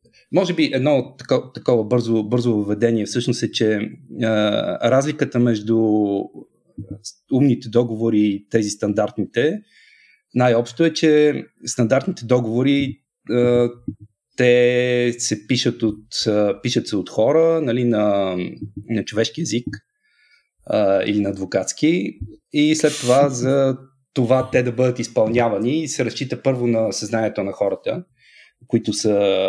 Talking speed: 125 wpm